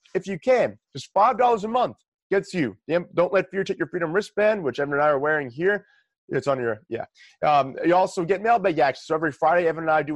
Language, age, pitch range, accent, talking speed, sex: English, 30-49, 155-200 Hz, American, 235 wpm, male